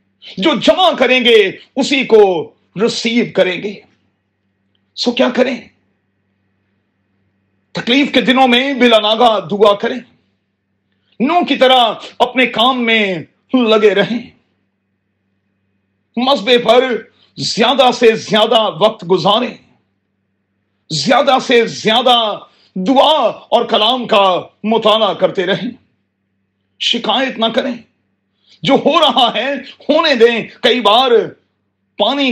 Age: 40-59